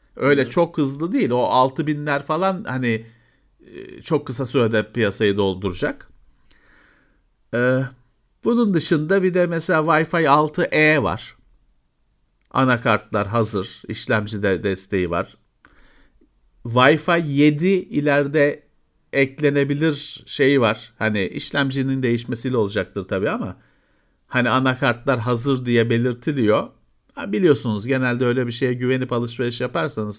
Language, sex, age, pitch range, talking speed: Turkish, male, 50-69, 115-150 Hz, 105 wpm